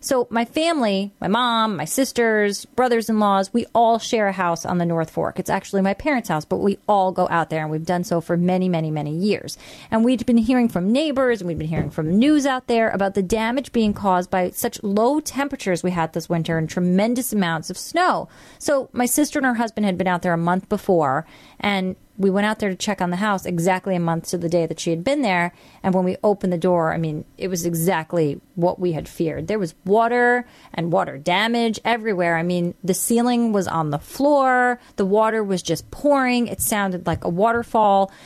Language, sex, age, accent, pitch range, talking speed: English, female, 30-49, American, 180-235 Hz, 225 wpm